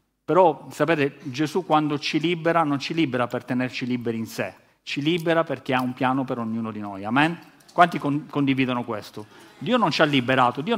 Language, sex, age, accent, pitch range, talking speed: Italian, male, 40-59, native, 135-170 Hz, 190 wpm